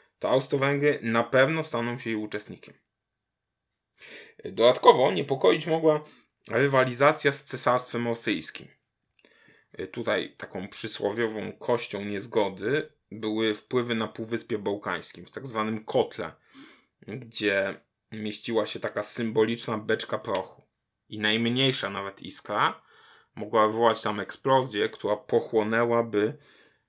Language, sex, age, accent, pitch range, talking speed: Polish, male, 20-39, native, 105-135 Hz, 105 wpm